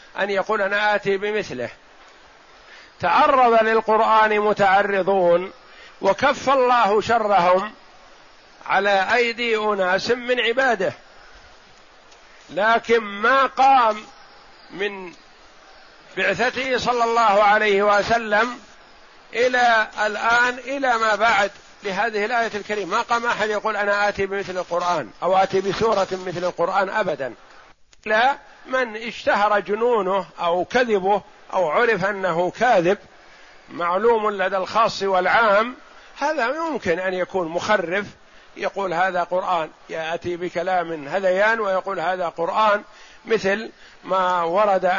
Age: 50-69